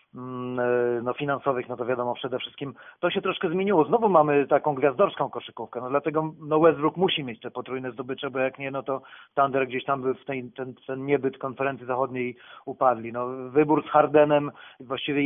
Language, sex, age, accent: Polish, male, 40-59, native